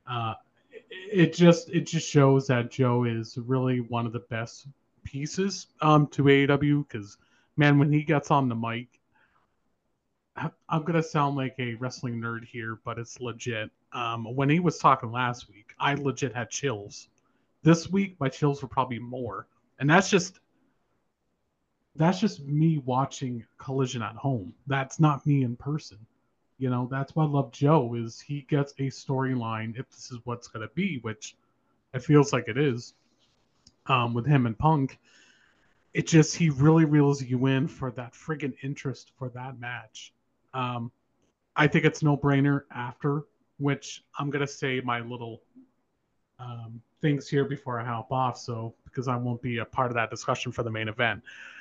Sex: male